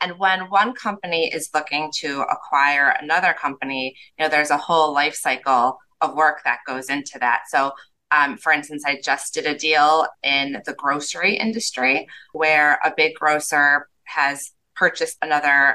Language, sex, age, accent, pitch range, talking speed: English, female, 20-39, American, 140-160 Hz, 165 wpm